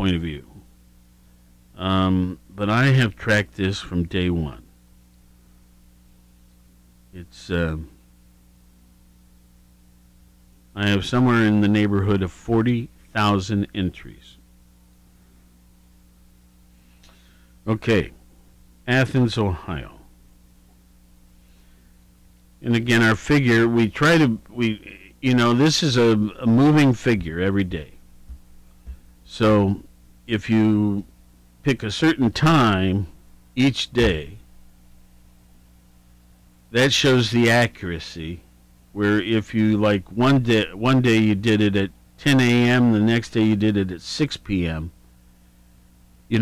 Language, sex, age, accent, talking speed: English, male, 50-69, American, 105 wpm